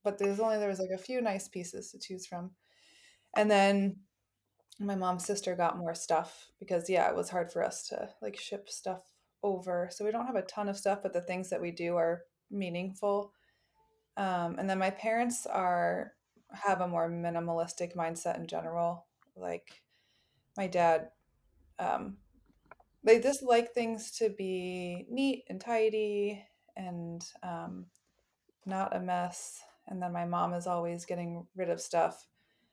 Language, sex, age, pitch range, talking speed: English, female, 20-39, 170-215 Hz, 165 wpm